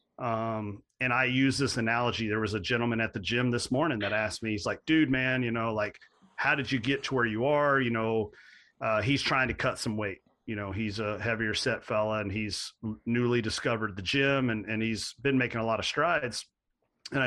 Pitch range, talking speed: 110-135 Hz, 225 wpm